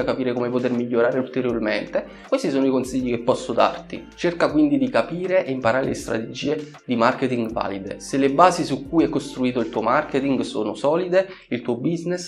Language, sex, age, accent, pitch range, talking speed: Italian, male, 20-39, native, 125-165 Hz, 185 wpm